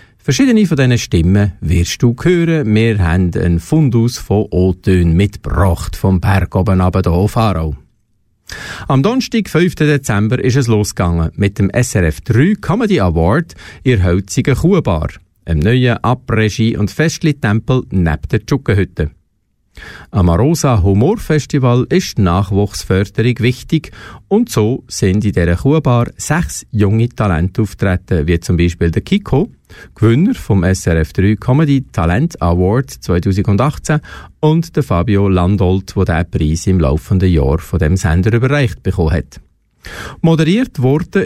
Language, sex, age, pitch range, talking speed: German, male, 50-69, 90-130 Hz, 135 wpm